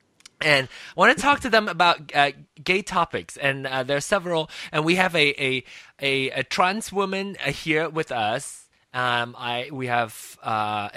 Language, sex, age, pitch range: Chinese, male, 20-39, 125-180 Hz